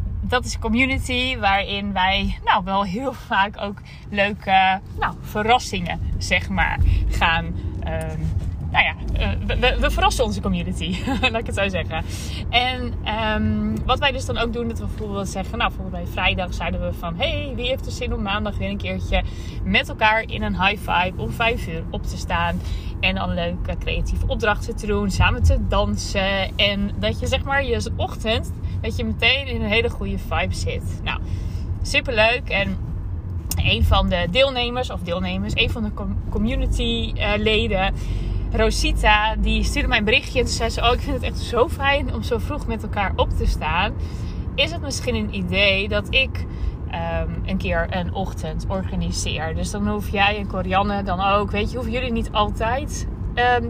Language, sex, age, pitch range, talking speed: Dutch, female, 20-39, 90-105 Hz, 180 wpm